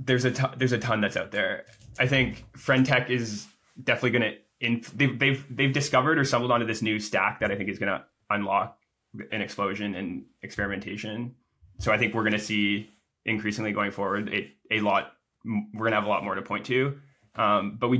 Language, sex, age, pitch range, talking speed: English, male, 10-29, 100-115 Hz, 205 wpm